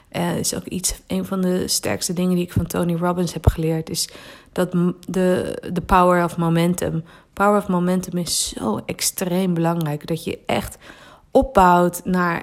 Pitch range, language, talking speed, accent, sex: 165-190 Hz, Dutch, 175 wpm, Dutch, female